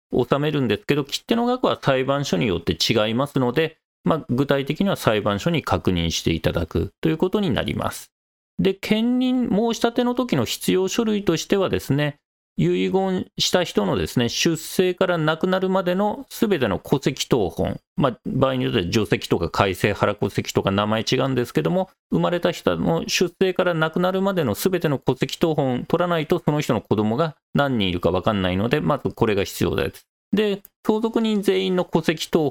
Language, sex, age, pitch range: Japanese, male, 40-59, 130-200 Hz